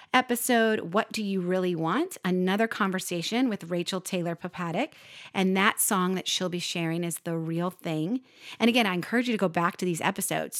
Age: 30-49